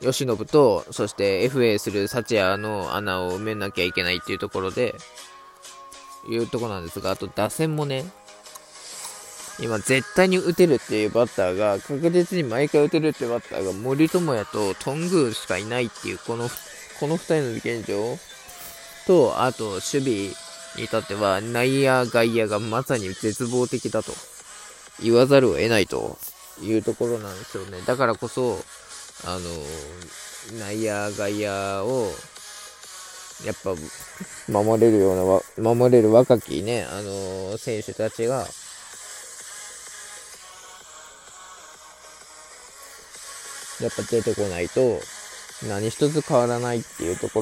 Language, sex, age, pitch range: Japanese, male, 20-39, 105-135 Hz